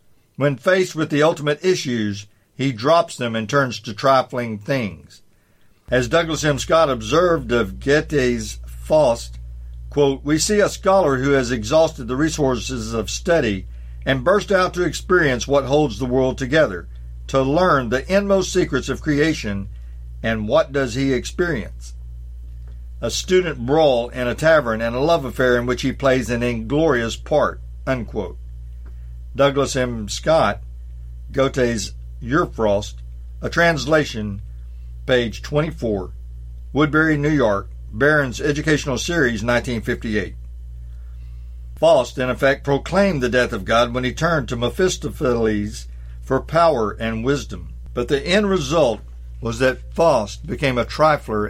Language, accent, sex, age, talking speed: English, American, male, 50-69, 135 wpm